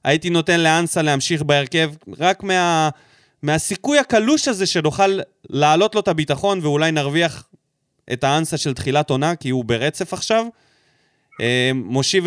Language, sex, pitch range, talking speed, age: Hebrew, male, 135-185 Hz, 130 wpm, 20-39